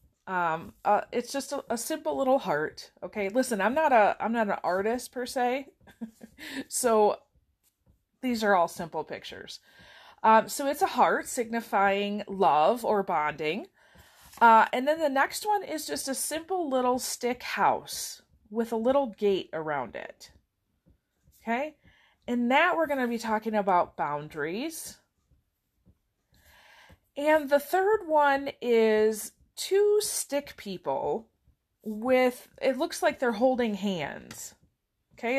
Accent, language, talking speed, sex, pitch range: American, English, 135 wpm, female, 205-285 Hz